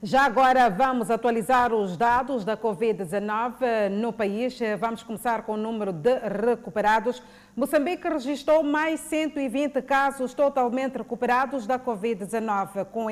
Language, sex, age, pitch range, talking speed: Portuguese, female, 40-59, 240-290 Hz, 125 wpm